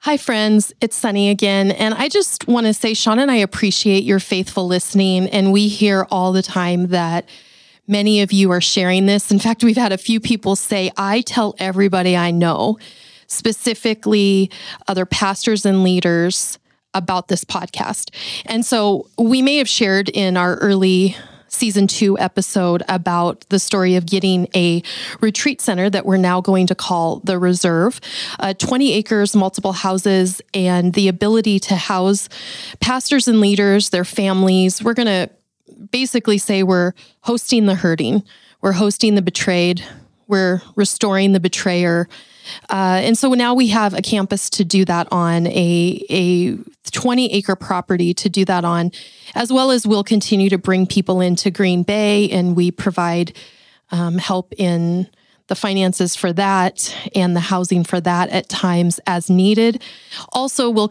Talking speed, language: 160 wpm, English